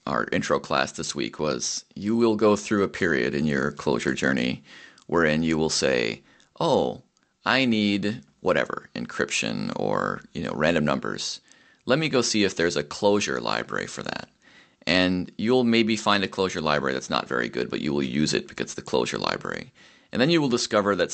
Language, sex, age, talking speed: English, male, 30-49, 195 wpm